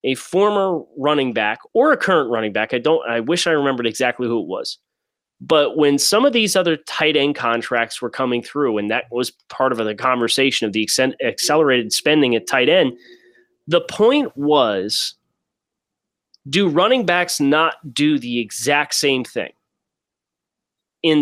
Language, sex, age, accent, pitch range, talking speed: English, male, 30-49, American, 125-160 Hz, 165 wpm